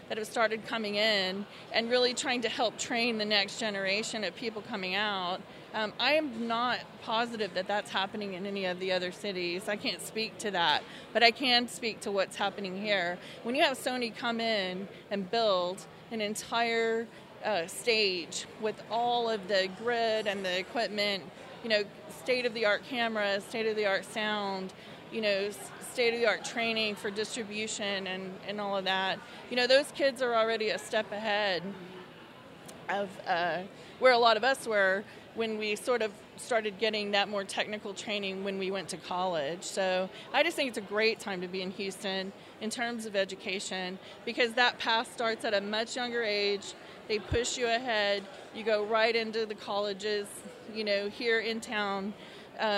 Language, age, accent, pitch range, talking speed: English, 30-49, American, 195-230 Hz, 175 wpm